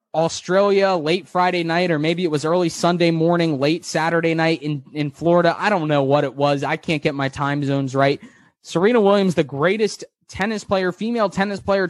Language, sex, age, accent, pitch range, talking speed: English, male, 20-39, American, 145-180 Hz, 195 wpm